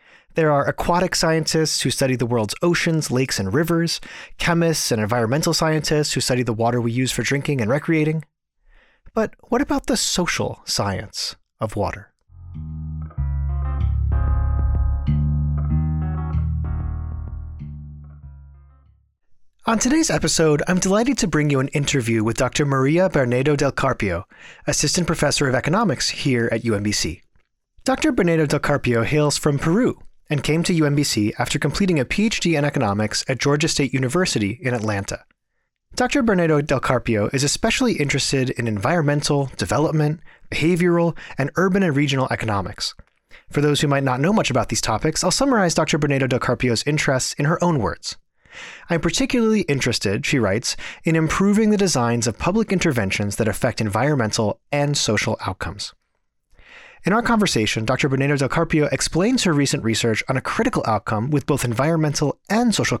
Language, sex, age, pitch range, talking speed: English, male, 30-49, 110-165 Hz, 150 wpm